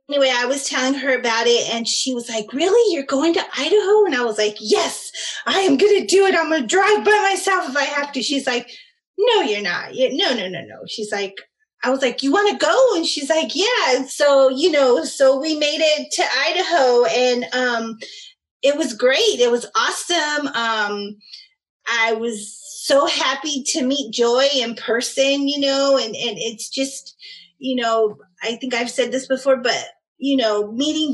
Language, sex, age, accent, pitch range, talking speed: English, female, 30-49, American, 230-290 Hz, 200 wpm